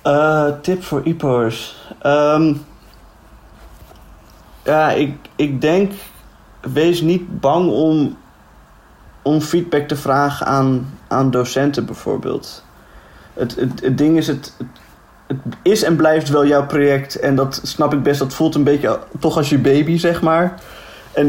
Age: 20-39